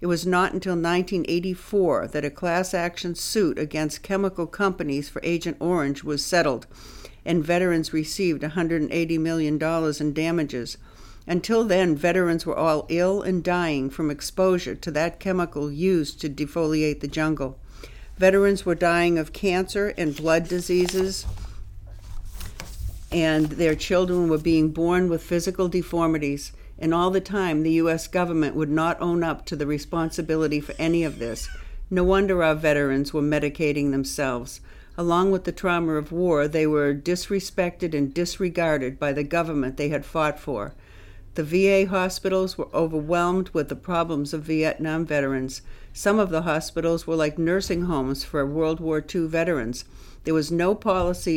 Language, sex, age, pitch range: English, female, 60-79, 150-180 Hz